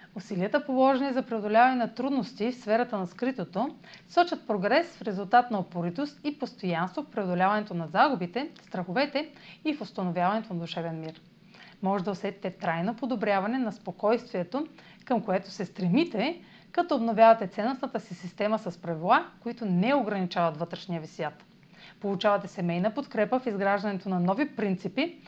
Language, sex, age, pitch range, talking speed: Bulgarian, female, 30-49, 185-255 Hz, 145 wpm